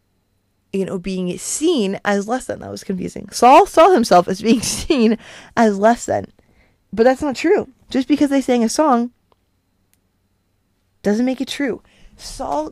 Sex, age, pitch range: female, 20-39, 150-245 Hz